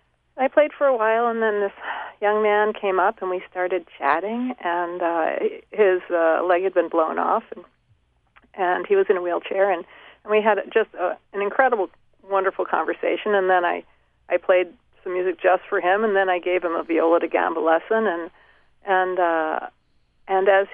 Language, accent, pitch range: English, American, 175-220 Hz